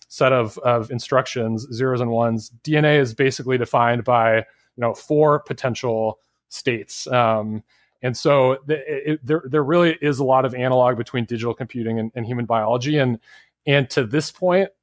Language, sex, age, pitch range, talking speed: English, male, 30-49, 115-135 Hz, 170 wpm